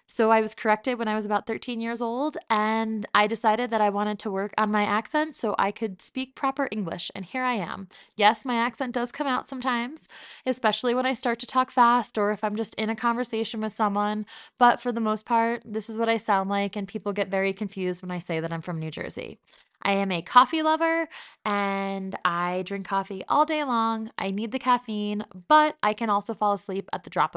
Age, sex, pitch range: 20-39, female, 205-255 Hz